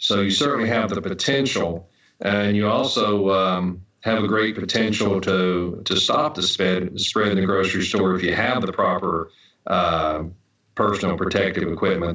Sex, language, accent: male, English, American